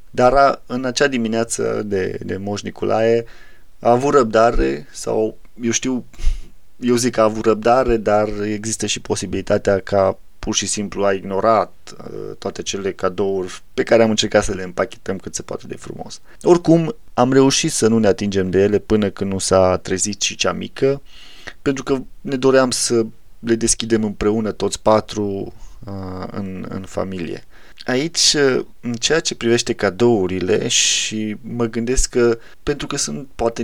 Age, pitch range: 20-39, 95-120 Hz